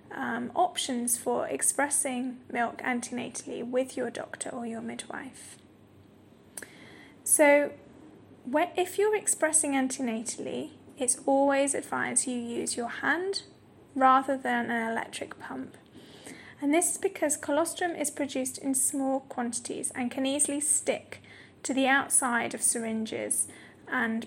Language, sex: Vietnamese, female